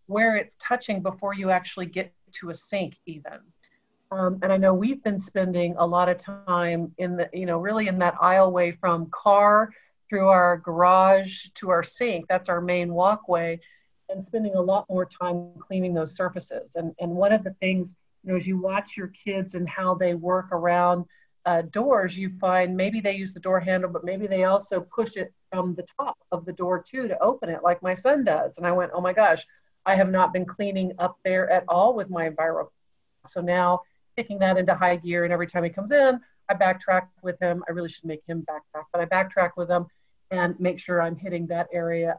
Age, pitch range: 40-59, 175-195 Hz